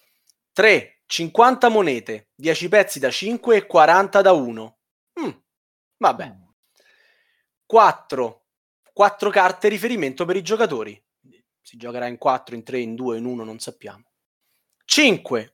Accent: native